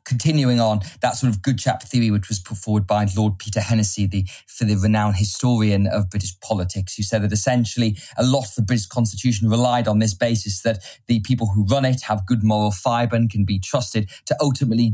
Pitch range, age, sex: 105-125 Hz, 20-39, male